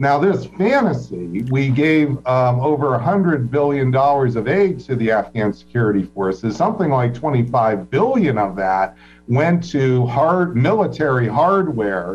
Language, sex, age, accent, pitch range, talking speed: English, male, 50-69, American, 115-145 Hz, 145 wpm